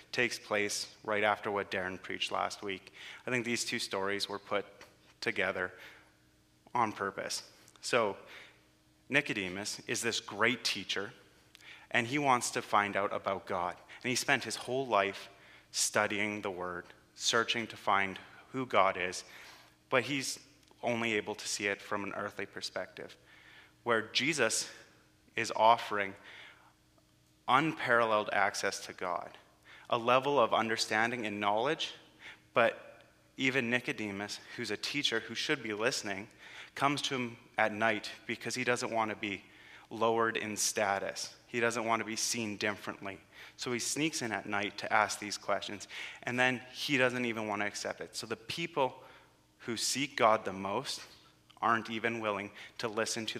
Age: 30-49